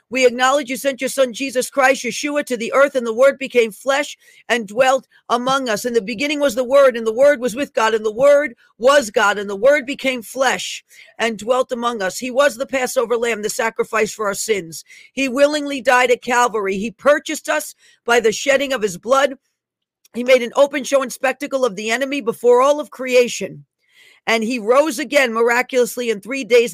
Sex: female